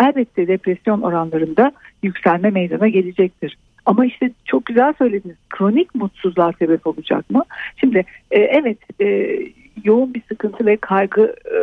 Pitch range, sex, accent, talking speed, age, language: 175-235 Hz, female, native, 120 wpm, 50-69, Turkish